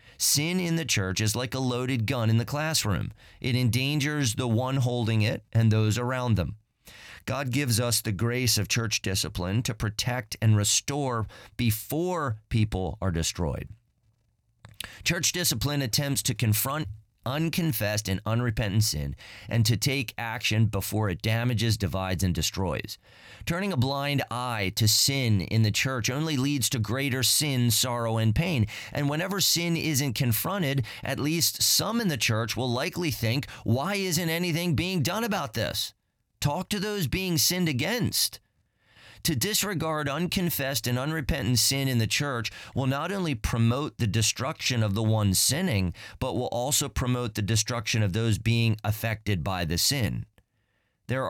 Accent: American